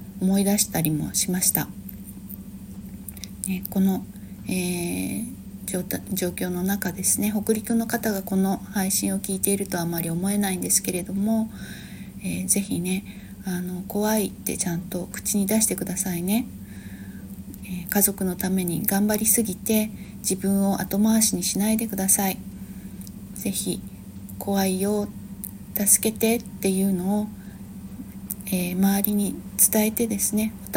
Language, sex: Japanese, female